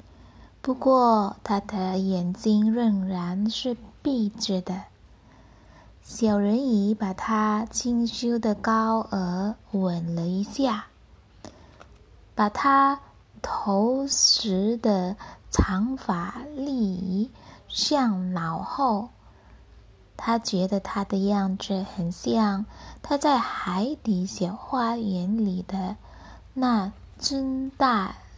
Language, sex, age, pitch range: Indonesian, female, 20-39, 185-240 Hz